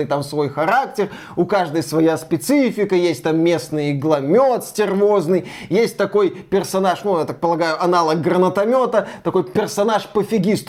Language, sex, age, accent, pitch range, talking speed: Russian, male, 20-39, native, 170-220 Hz, 135 wpm